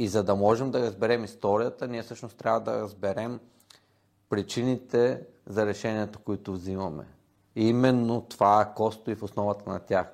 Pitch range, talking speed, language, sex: 100-120 Hz, 155 wpm, Bulgarian, male